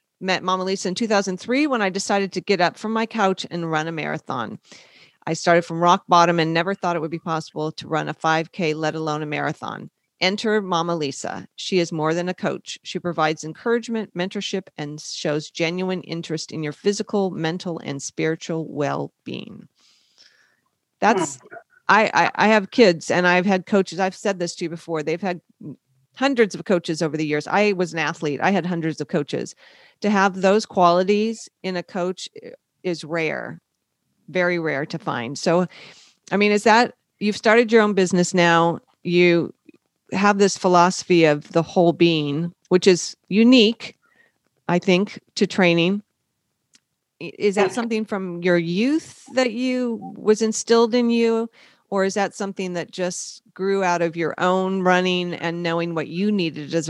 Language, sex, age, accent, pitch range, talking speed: English, female, 40-59, American, 165-205 Hz, 175 wpm